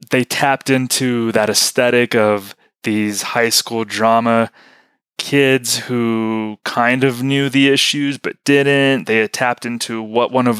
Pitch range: 105-125 Hz